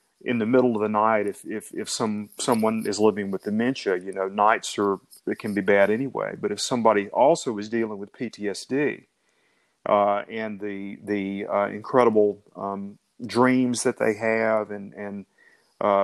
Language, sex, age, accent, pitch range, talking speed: English, male, 40-59, American, 105-125 Hz, 170 wpm